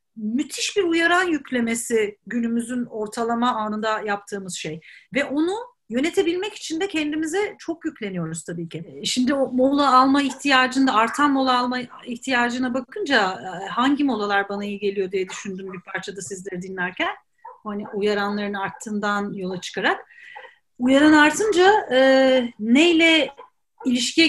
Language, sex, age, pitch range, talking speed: Turkish, female, 40-59, 215-300 Hz, 125 wpm